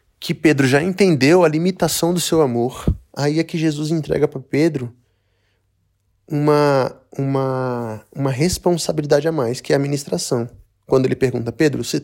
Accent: Brazilian